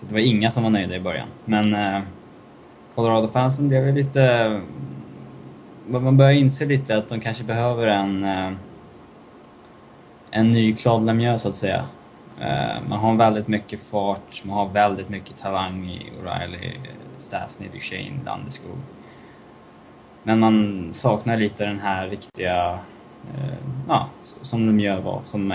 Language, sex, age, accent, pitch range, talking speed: Swedish, male, 20-39, Norwegian, 100-115 Hz, 135 wpm